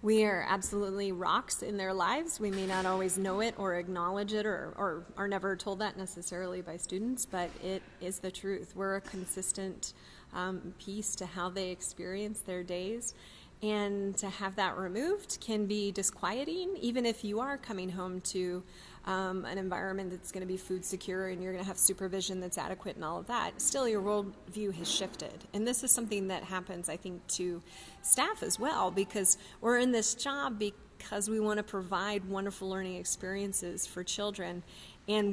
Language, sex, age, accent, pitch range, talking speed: English, female, 30-49, American, 185-210 Hz, 185 wpm